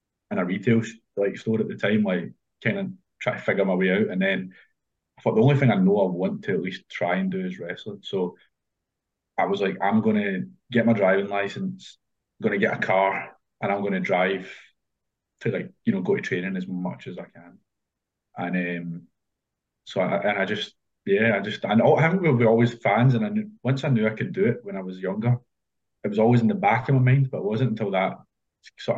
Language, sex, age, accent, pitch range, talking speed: English, male, 20-39, British, 100-135 Hz, 235 wpm